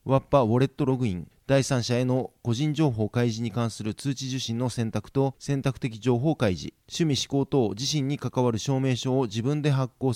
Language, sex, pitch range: Japanese, male, 120-145 Hz